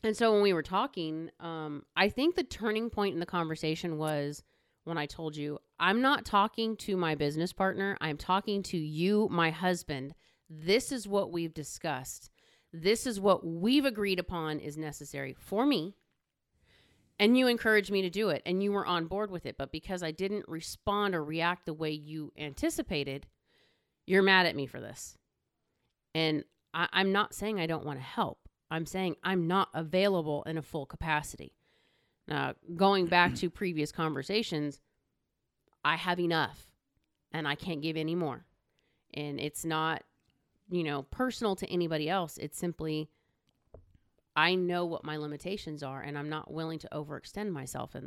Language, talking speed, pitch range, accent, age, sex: English, 170 wpm, 150-195 Hz, American, 30-49, female